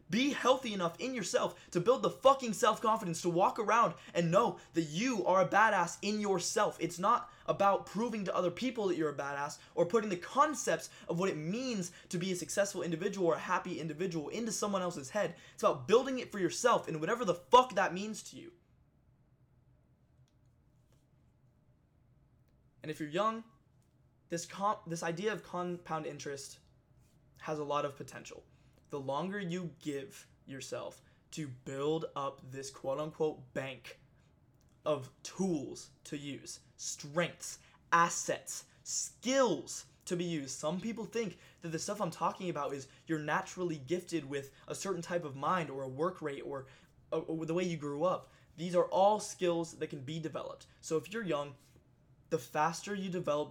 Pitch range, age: 150-195 Hz, 20-39